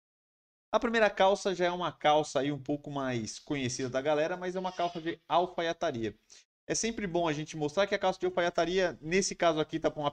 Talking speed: 220 wpm